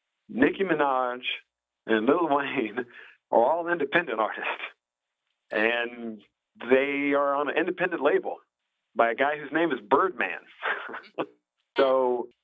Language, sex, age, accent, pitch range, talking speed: English, male, 40-59, American, 95-125 Hz, 115 wpm